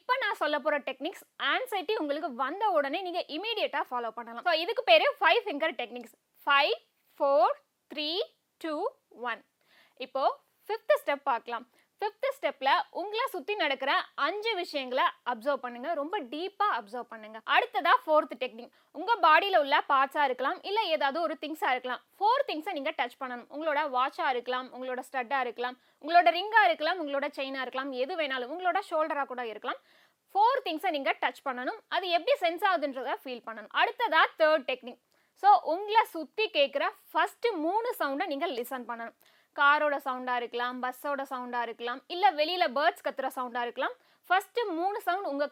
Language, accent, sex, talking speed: Tamil, native, female, 155 wpm